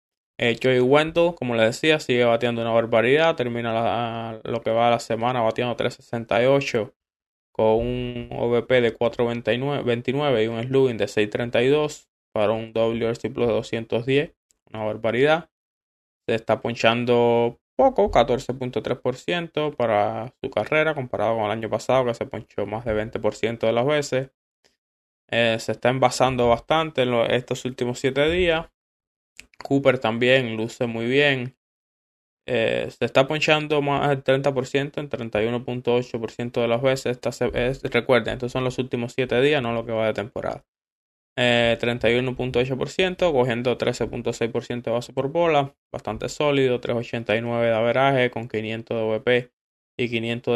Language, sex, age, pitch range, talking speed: Spanish, male, 20-39, 115-130 Hz, 145 wpm